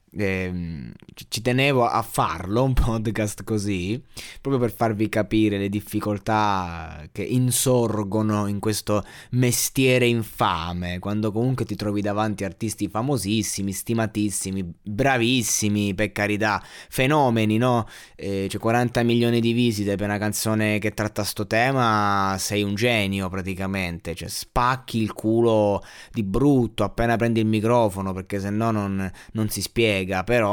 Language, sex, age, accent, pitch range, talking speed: Italian, male, 20-39, native, 95-115 Hz, 135 wpm